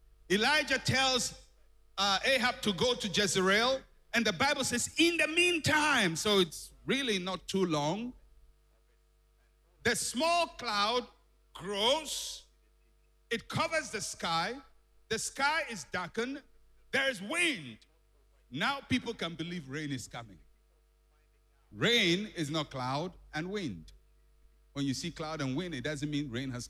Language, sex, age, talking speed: English, male, 60-79, 135 wpm